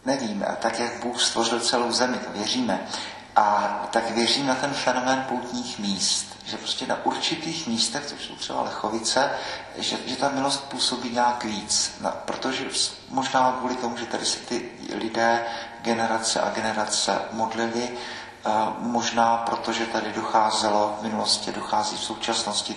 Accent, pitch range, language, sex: native, 105-120 Hz, Czech, male